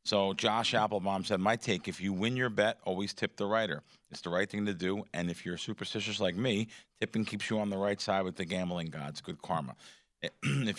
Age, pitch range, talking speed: 40-59, 105-140 Hz, 230 wpm